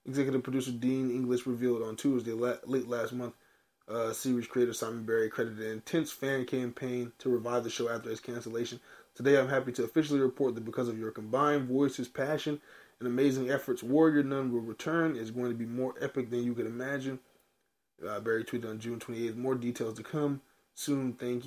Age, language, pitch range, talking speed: 20-39, English, 120-140 Hz, 195 wpm